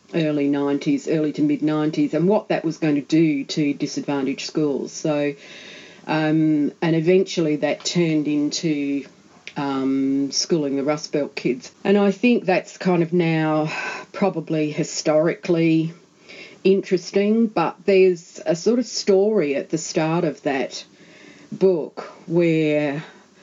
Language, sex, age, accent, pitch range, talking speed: English, female, 40-59, Australian, 150-175 Hz, 135 wpm